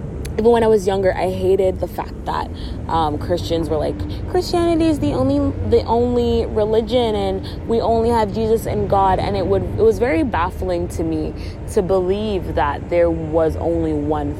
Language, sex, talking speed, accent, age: English, female, 185 wpm, American, 20-39